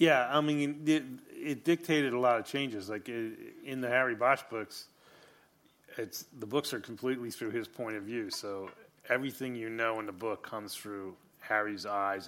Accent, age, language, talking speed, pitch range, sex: American, 30-49, English, 175 wpm, 100-125 Hz, male